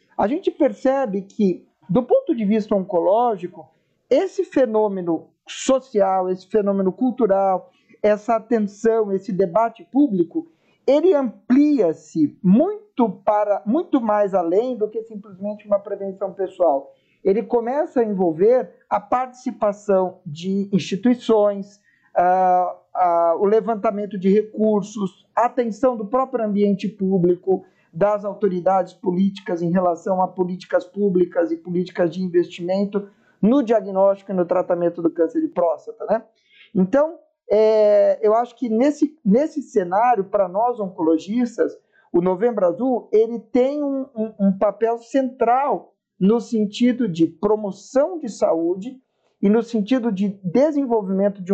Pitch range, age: 185-240 Hz, 50-69